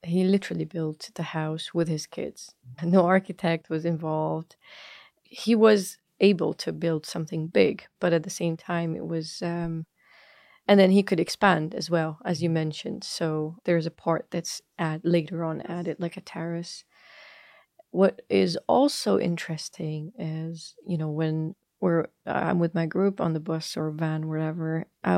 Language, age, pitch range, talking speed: English, 30-49, 160-185 Hz, 165 wpm